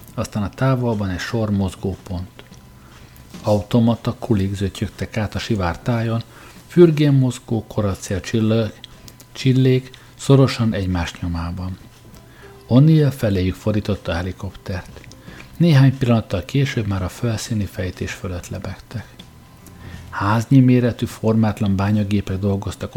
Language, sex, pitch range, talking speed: Hungarian, male, 95-120 Hz, 100 wpm